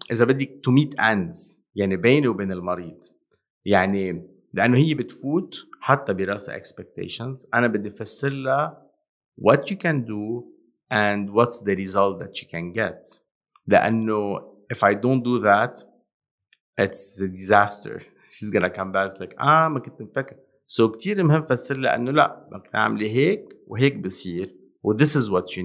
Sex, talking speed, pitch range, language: male, 125 wpm, 100-130 Hz, English